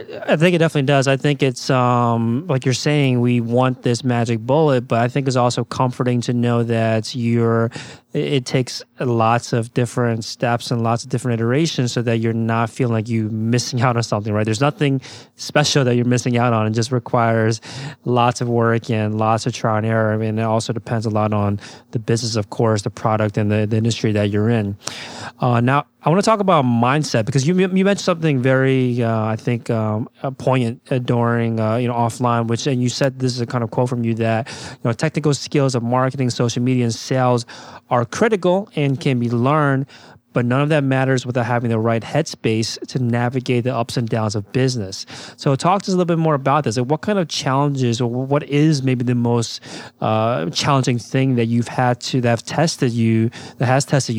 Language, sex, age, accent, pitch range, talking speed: English, male, 20-39, American, 115-135 Hz, 220 wpm